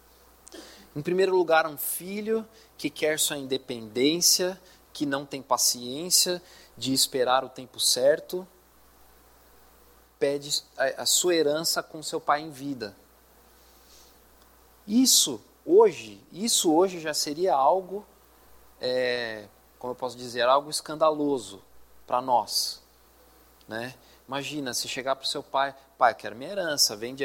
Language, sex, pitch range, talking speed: Portuguese, male, 120-170 Hz, 125 wpm